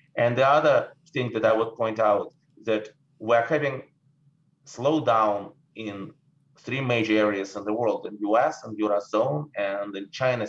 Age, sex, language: 30-49, male, English